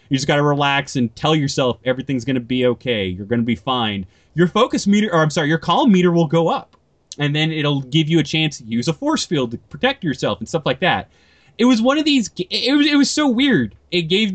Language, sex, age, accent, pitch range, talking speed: English, male, 20-39, American, 125-180 Hz, 260 wpm